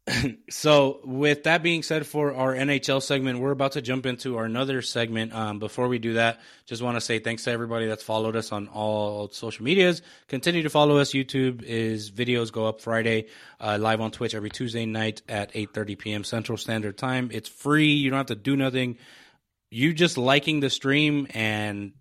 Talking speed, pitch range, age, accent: 200 wpm, 110-135 Hz, 20-39, American